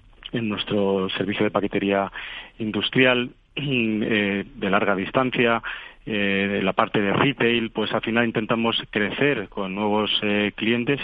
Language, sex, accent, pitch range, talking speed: Spanish, male, Spanish, 100-115 Hz, 135 wpm